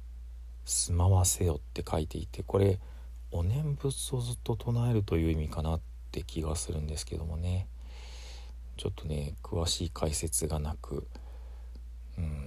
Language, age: Japanese, 40-59